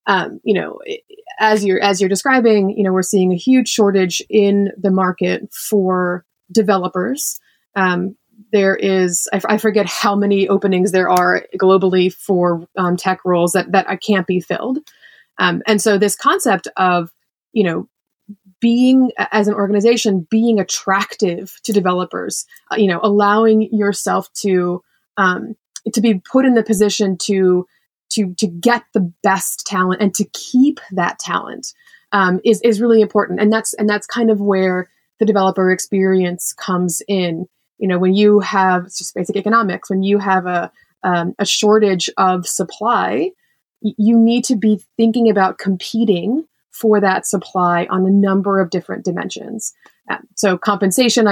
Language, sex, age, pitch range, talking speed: English, female, 20-39, 185-220 Hz, 160 wpm